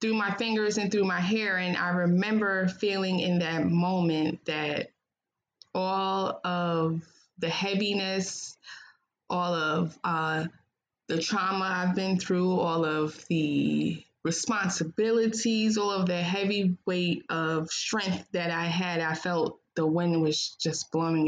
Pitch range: 160-195 Hz